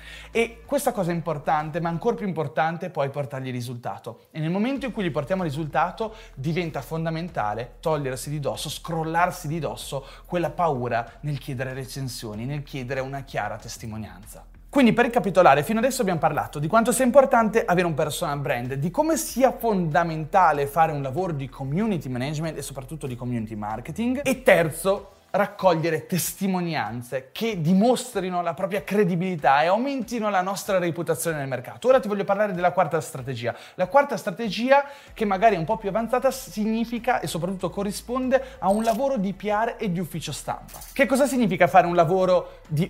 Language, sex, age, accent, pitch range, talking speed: Italian, male, 30-49, native, 150-220 Hz, 175 wpm